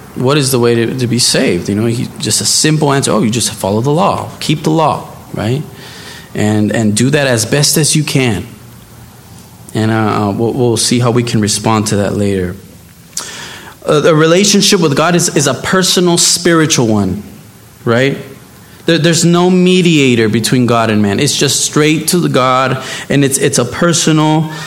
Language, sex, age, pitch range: English, male, 20-39, 120-165 Hz